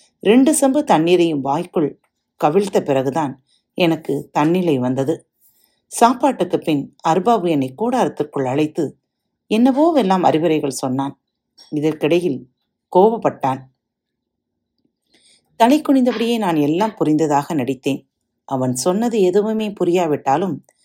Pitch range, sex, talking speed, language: 140-220 Hz, female, 90 wpm, Tamil